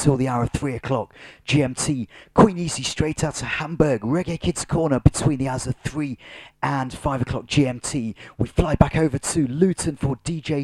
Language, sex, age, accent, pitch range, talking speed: English, male, 30-49, British, 110-145 Hz, 185 wpm